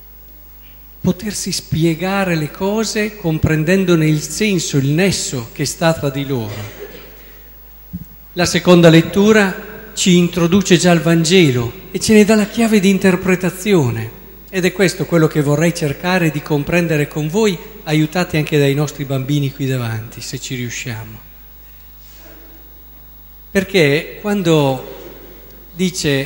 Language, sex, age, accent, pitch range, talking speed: Italian, male, 40-59, native, 145-185 Hz, 125 wpm